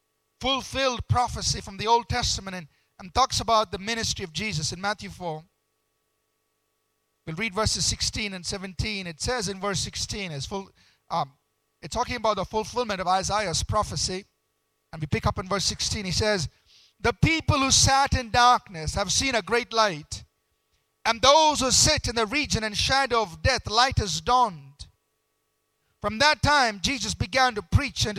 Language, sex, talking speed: English, male, 170 wpm